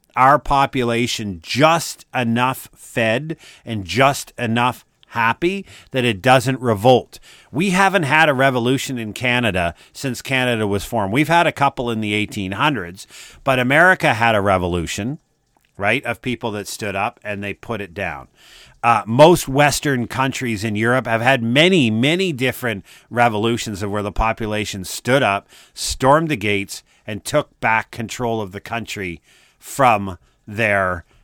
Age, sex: 50-69, male